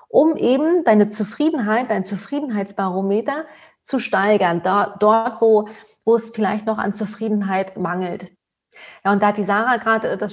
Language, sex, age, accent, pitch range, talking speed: German, female, 30-49, German, 190-220 Hz, 145 wpm